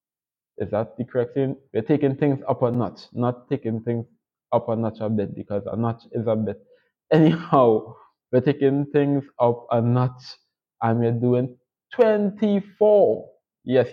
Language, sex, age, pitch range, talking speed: English, male, 20-39, 110-135 Hz, 160 wpm